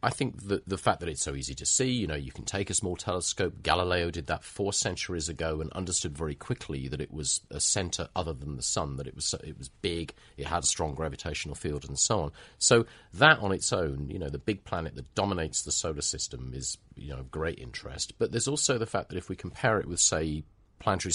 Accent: British